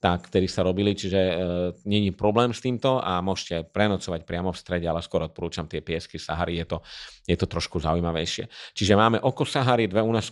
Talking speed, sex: 185 wpm, male